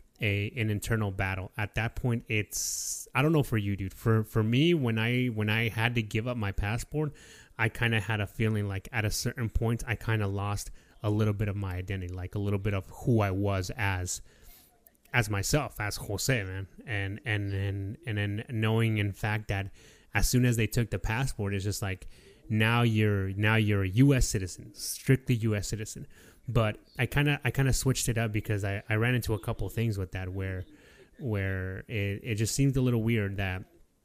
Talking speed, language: 210 wpm, English